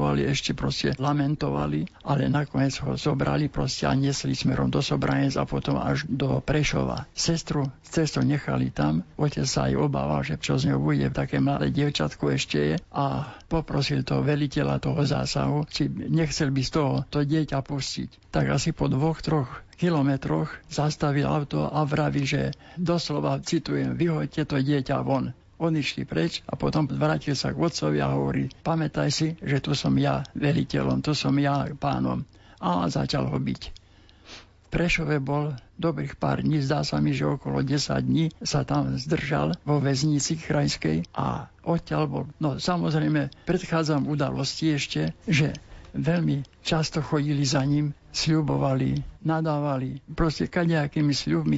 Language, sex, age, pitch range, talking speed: Slovak, male, 60-79, 95-155 Hz, 150 wpm